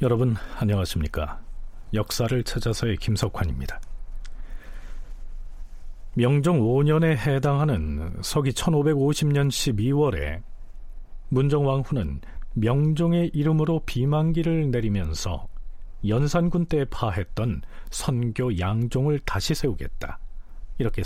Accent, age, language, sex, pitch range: native, 40-59, Korean, male, 100-155 Hz